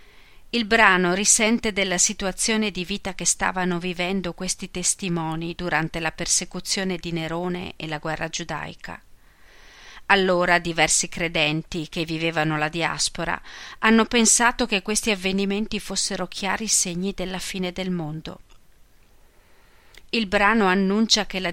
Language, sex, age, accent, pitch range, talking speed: Italian, female, 40-59, native, 170-200 Hz, 125 wpm